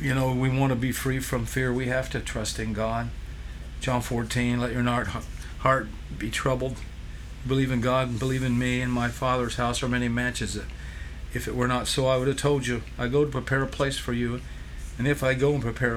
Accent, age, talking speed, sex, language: American, 50-69, 225 wpm, male, English